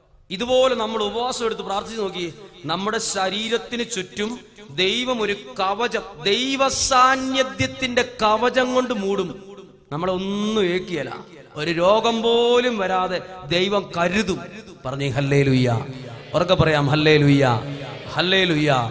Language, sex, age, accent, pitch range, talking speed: Malayalam, male, 30-49, native, 160-225 Hz, 90 wpm